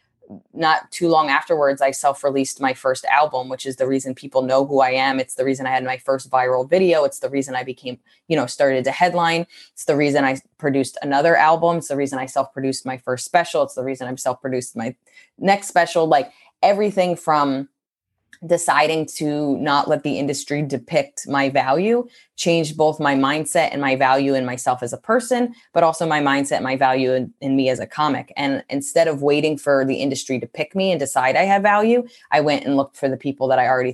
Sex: female